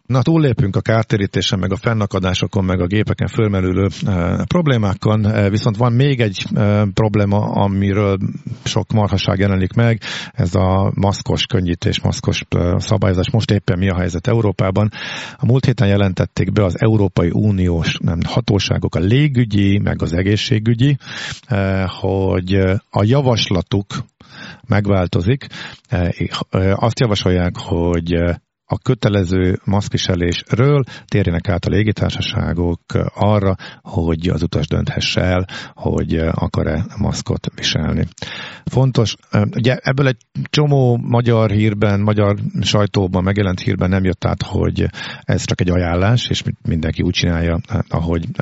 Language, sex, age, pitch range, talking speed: Hungarian, male, 50-69, 95-120 Hz, 120 wpm